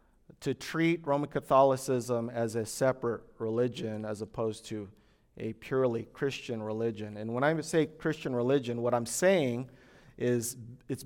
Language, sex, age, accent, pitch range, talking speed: English, male, 30-49, American, 115-135 Hz, 140 wpm